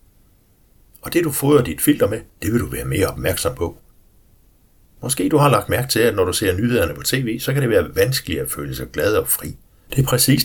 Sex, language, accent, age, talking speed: male, Danish, native, 60-79, 235 wpm